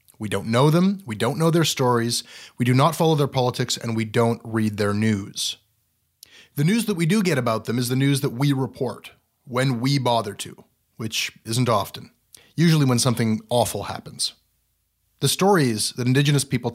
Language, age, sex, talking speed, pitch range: English, 30-49, male, 185 wpm, 110-145 Hz